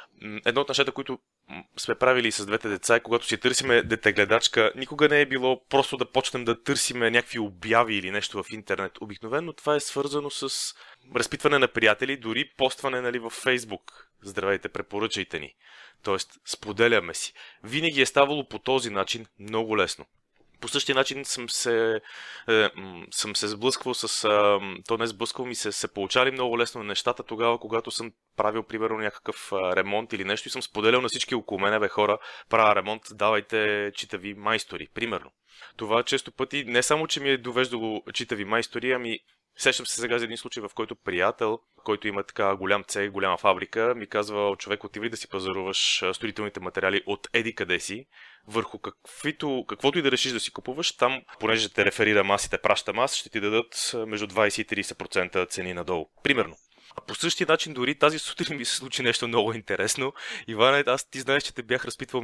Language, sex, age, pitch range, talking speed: Bulgarian, male, 20-39, 105-130 Hz, 180 wpm